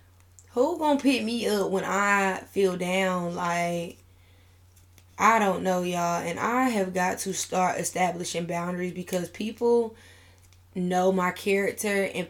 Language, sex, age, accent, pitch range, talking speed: English, female, 10-29, American, 170-195 Hz, 140 wpm